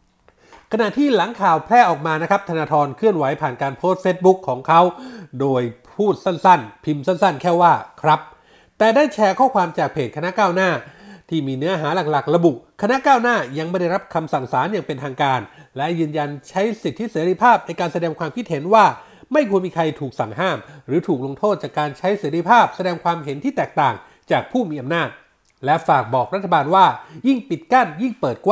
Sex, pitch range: male, 150-210 Hz